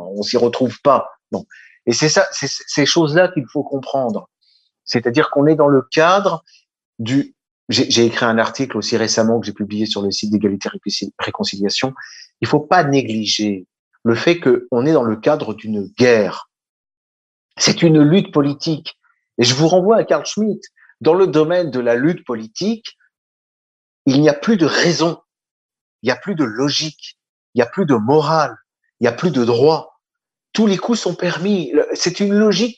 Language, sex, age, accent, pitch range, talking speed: French, male, 50-69, French, 115-180 Hz, 185 wpm